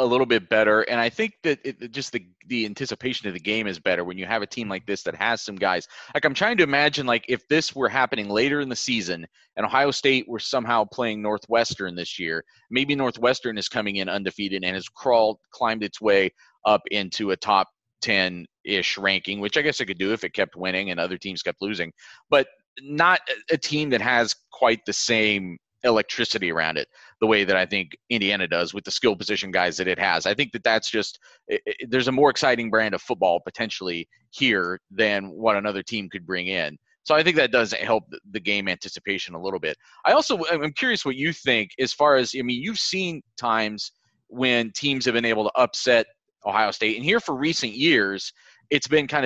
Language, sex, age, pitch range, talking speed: English, male, 30-49, 100-135 Hz, 215 wpm